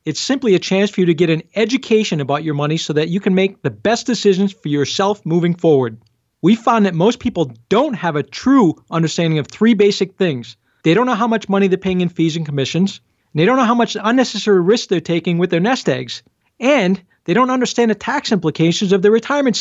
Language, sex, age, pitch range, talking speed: English, male, 40-59, 170-230 Hz, 225 wpm